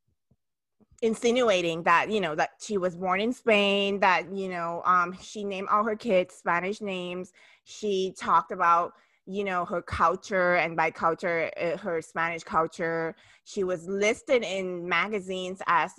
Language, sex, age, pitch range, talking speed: English, female, 20-39, 175-210 Hz, 155 wpm